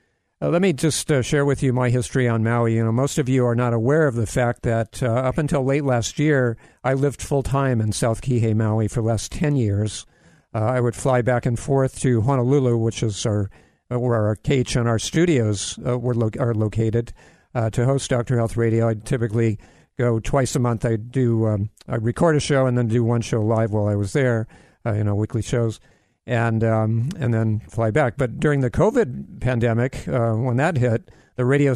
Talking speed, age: 215 wpm, 50-69